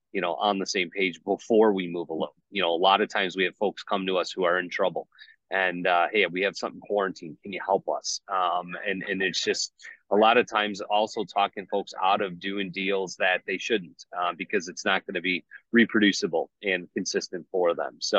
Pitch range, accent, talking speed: 95-110 Hz, American, 230 wpm